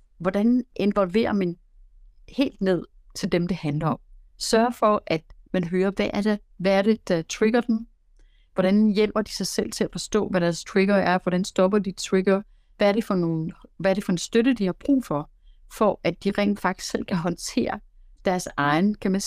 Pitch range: 175-215 Hz